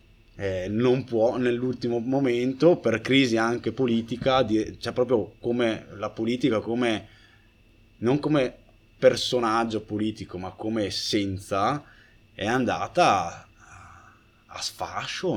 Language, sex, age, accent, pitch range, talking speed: Italian, male, 20-39, native, 105-125 Hz, 110 wpm